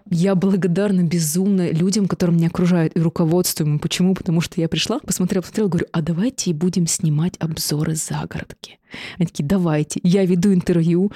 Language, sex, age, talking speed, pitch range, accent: Russian, female, 20-39, 155 wpm, 170-195 Hz, native